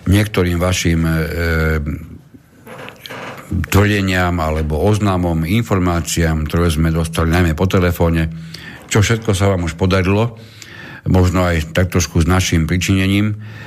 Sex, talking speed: male, 115 wpm